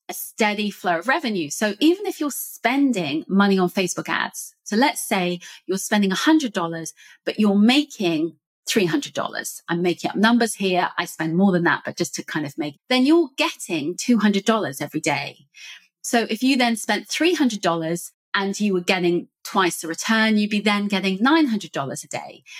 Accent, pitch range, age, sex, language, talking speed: British, 180-245 Hz, 30-49, female, English, 180 wpm